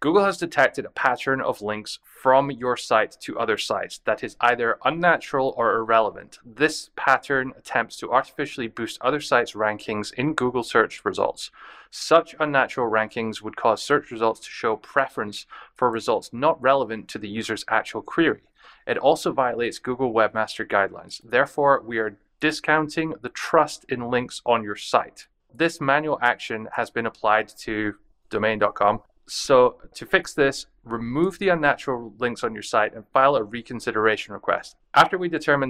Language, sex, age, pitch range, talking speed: English, male, 20-39, 110-150 Hz, 160 wpm